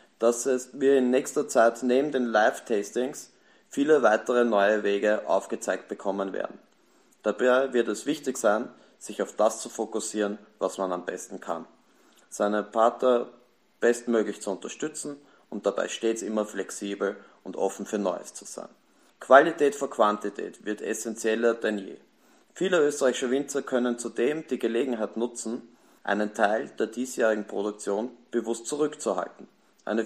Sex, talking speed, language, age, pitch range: male, 140 wpm, Italian, 30-49, 105-125 Hz